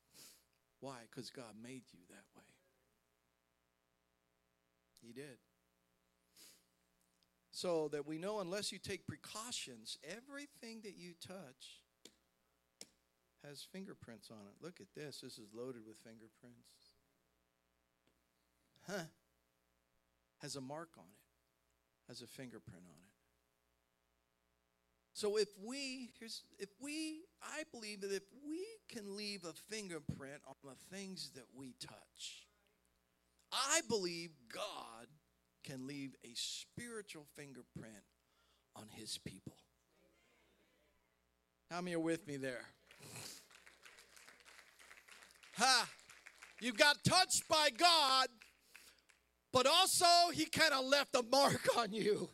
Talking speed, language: 110 wpm, English